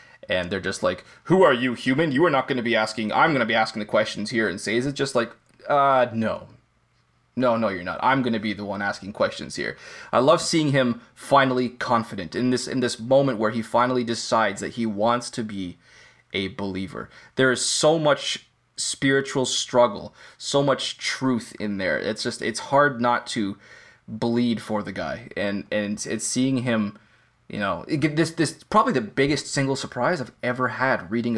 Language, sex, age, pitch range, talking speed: English, male, 20-39, 110-140 Hz, 205 wpm